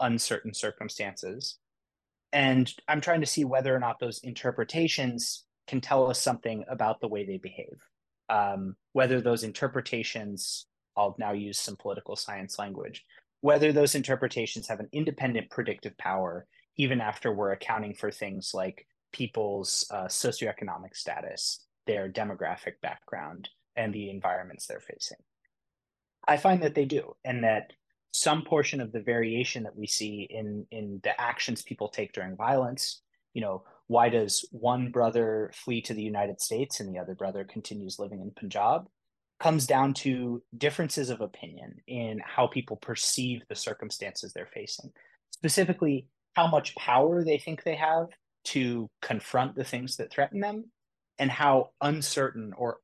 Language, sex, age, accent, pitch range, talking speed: English, male, 30-49, American, 105-140 Hz, 150 wpm